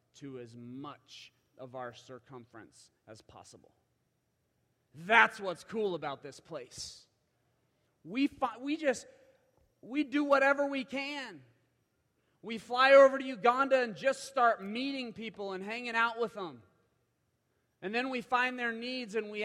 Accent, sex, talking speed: American, male, 140 wpm